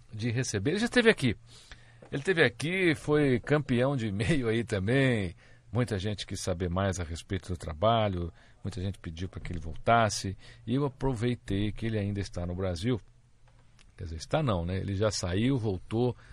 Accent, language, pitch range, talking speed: Brazilian, Portuguese, 90-120 Hz, 180 wpm